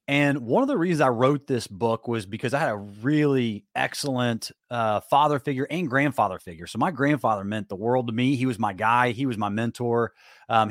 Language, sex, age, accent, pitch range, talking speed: English, male, 30-49, American, 115-150 Hz, 220 wpm